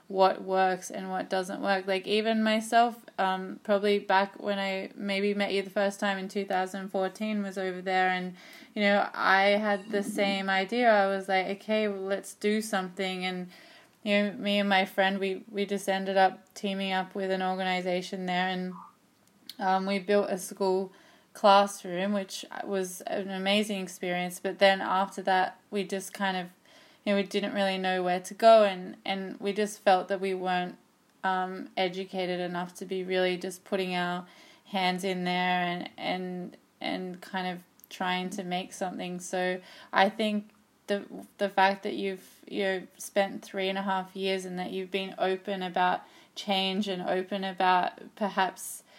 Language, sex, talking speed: English, female, 175 wpm